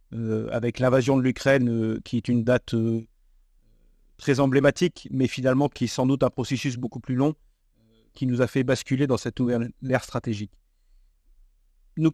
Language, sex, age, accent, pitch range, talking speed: French, male, 40-59, French, 120-145 Hz, 160 wpm